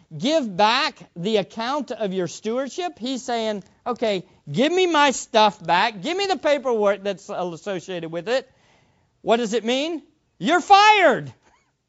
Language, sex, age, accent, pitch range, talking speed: English, male, 50-69, American, 190-315 Hz, 145 wpm